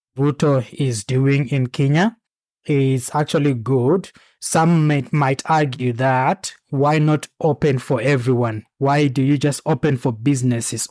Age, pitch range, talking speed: 20-39, 125-150 Hz, 140 wpm